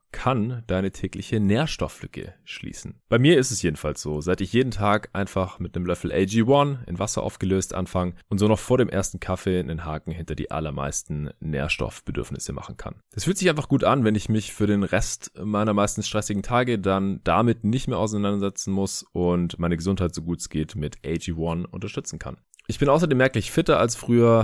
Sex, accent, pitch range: male, German, 90-120 Hz